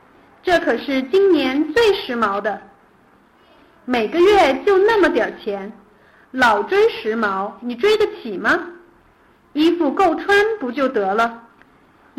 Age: 50-69